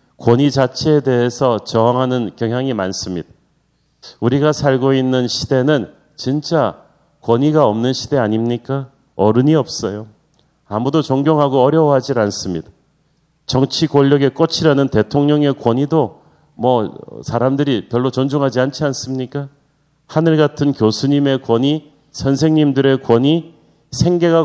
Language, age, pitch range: Korean, 40-59, 125-150 Hz